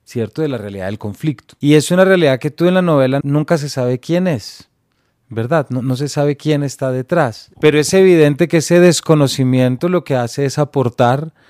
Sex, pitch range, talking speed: male, 115-145 Hz, 205 wpm